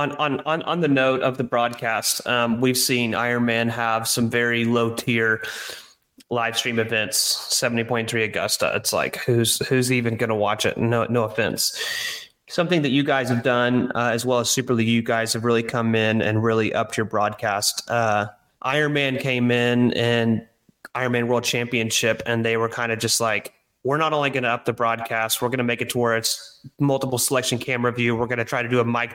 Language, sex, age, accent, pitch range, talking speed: English, male, 30-49, American, 115-130 Hz, 205 wpm